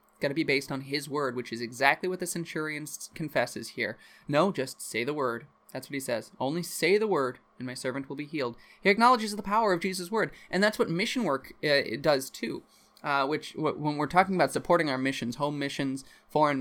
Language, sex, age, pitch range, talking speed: English, male, 20-39, 130-165 Hz, 225 wpm